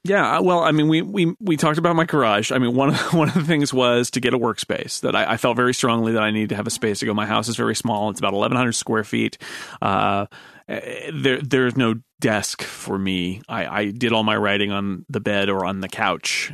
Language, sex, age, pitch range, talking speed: English, male, 30-49, 105-130 Hz, 260 wpm